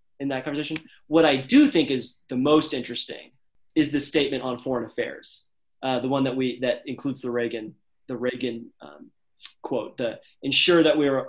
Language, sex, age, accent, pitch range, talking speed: English, male, 30-49, American, 120-135 Hz, 185 wpm